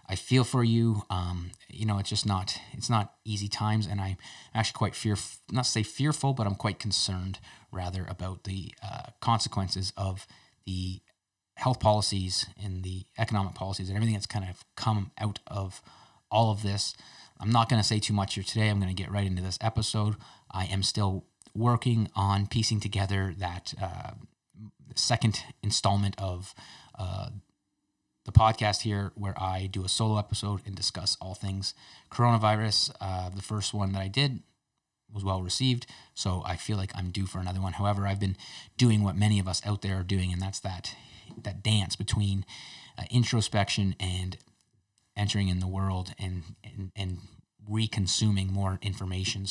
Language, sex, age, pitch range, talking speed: English, male, 30-49, 95-110 Hz, 175 wpm